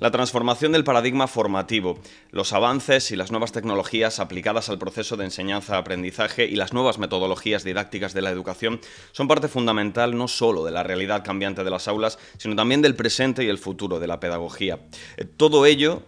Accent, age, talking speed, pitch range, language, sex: Spanish, 30-49, 180 wpm, 95-120 Hz, Spanish, male